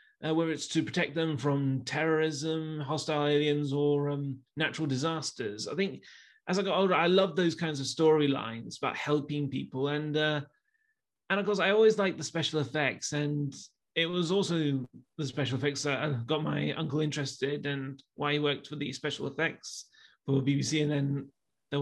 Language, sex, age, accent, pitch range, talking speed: English, male, 30-49, British, 140-175 Hz, 185 wpm